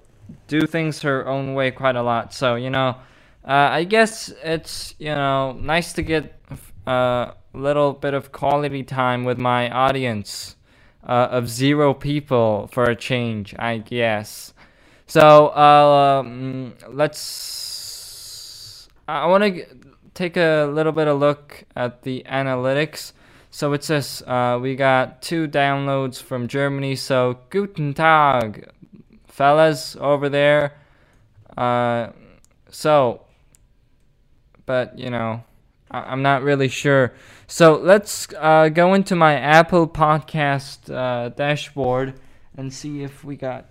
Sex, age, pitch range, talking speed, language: male, 20-39, 120-145 Hz, 130 wpm, English